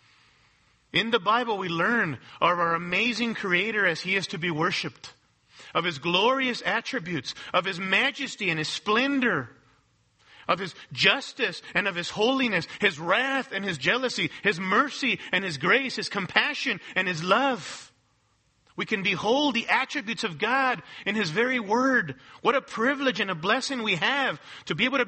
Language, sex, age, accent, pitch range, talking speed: English, male, 40-59, American, 175-245 Hz, 165 wpm